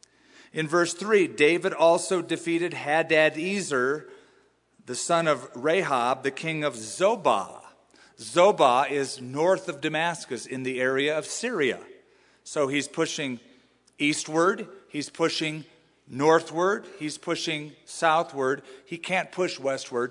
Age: 40-59